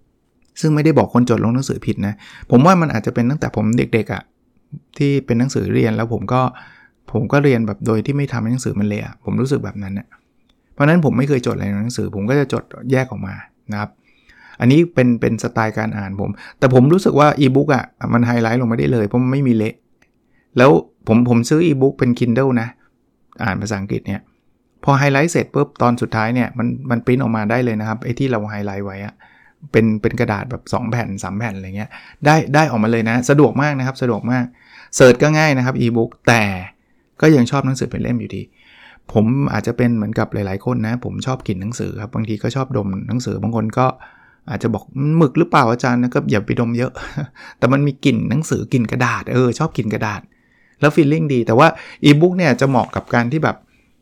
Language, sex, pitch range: English, male, 110-135 Hz